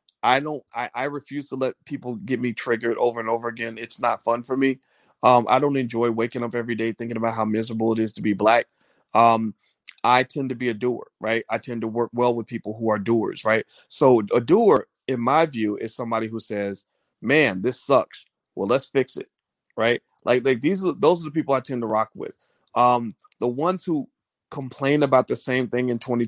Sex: male